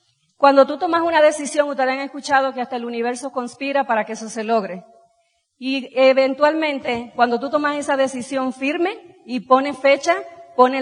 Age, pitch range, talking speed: 40-59, 230-270 Hz, 165 wpm